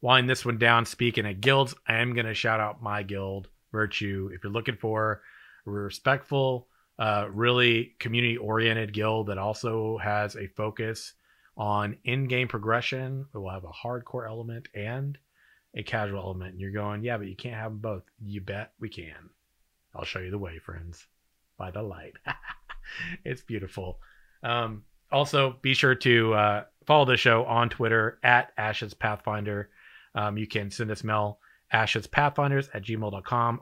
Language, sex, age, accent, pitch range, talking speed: English, male, 30-49, American, 110-135 Hz, 165 wpm